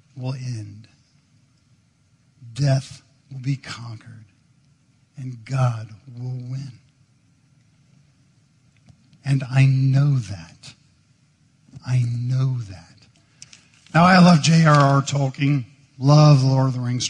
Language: English